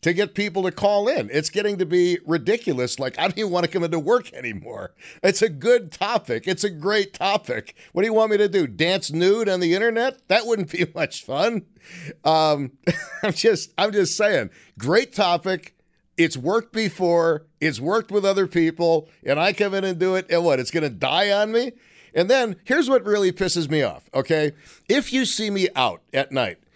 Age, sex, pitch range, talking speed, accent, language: 50-69, male, 170-245 Hz, 205 wpm, American, English